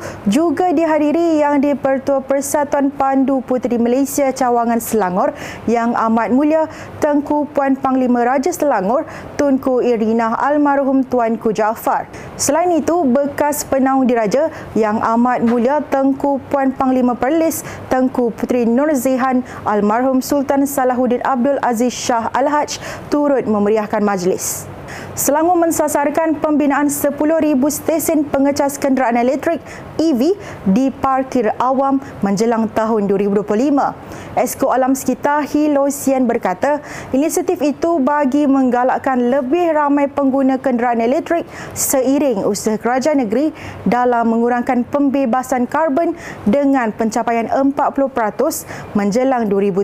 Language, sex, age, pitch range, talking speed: Malay, female, 30-49, 240-290 Hz, 110 wpm